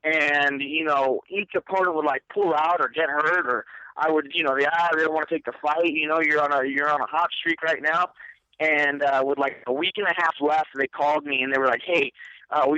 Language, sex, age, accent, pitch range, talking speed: English, male, 30-49, American, 140-165 Hz, 270 wpm